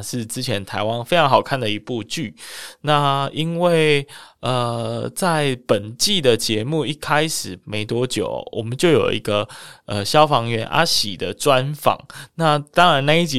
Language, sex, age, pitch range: Chinese, male, 20-39, 110-145 Hz